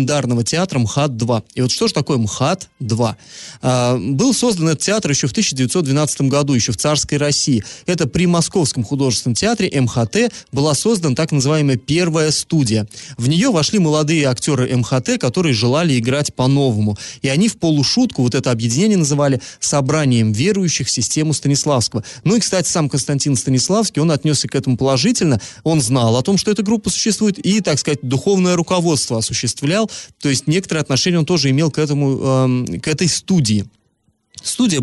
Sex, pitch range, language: male, 125-175 Hz, Russian